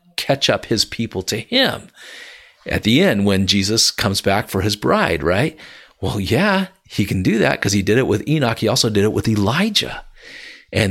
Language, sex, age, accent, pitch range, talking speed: English, male, 50-69, American, 95-125 Hz, 200 wpm